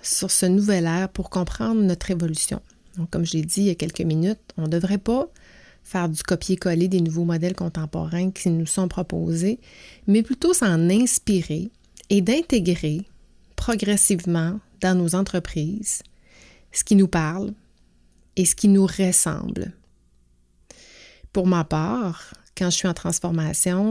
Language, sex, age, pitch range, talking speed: French, female, 30-49, 165-195 Hz, 150 wpm